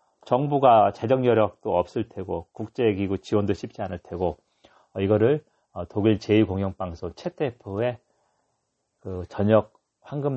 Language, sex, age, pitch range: Korean, male, 40-59, 100-140 Hz